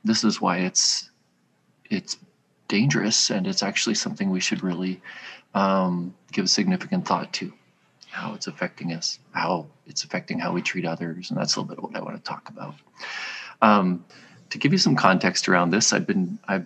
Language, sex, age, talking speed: English, male, 40-59, 190 wpm